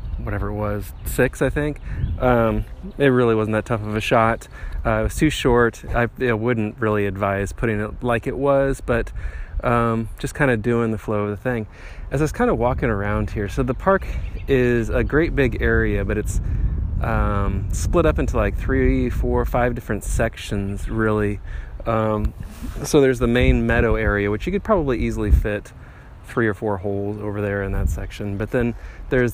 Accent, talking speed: American, 195 wpm